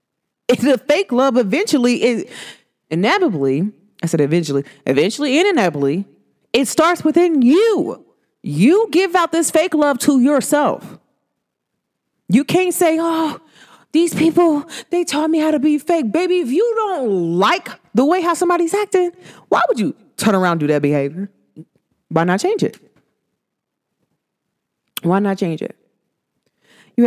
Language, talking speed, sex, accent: English, 145 wpm, female, American